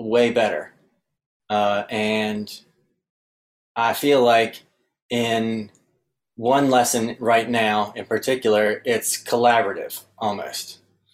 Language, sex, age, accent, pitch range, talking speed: English, male, 20-39, American, 105-115 Hz, 90 wpm